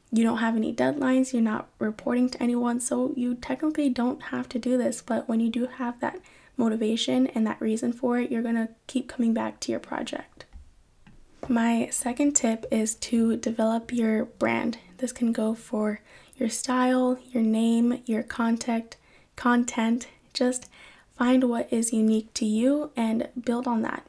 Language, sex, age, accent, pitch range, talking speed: English, female, 10-29, American, 220-250 Hz, 170 wpm